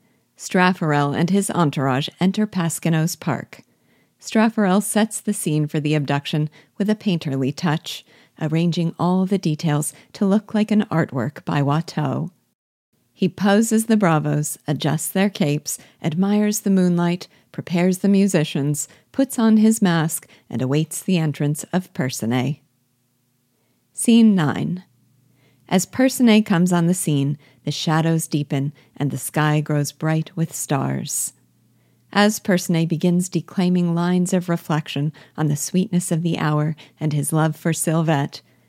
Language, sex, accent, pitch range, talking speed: English, female, American, 145-185 Hz, 135 wpm